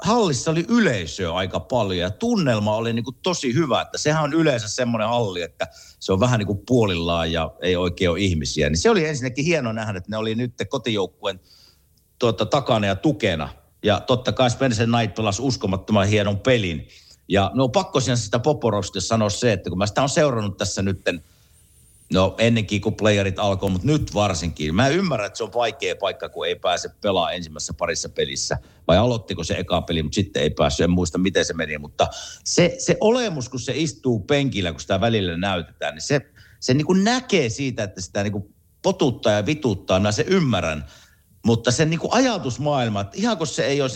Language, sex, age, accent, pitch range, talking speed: Finnish, male, 50-69, native, 95-145 Hz, 190 wpm